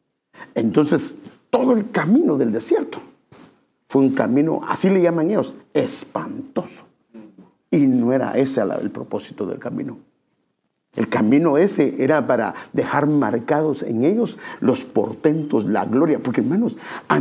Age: 50-69